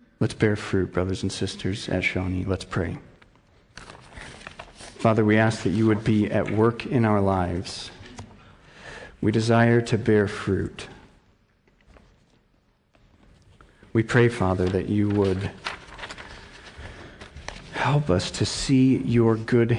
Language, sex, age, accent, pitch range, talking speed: English, male, 40-59, American, 95-115 Hz, 120 wpm